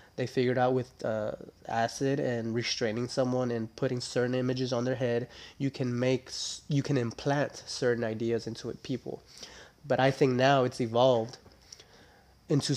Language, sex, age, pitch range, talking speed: English, male, 20-39, 120-135 Hz, 160 wpm